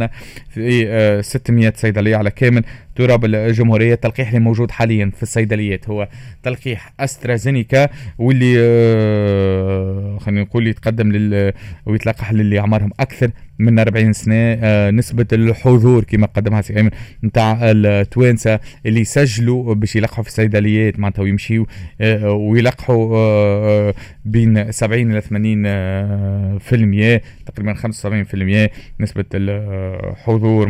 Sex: male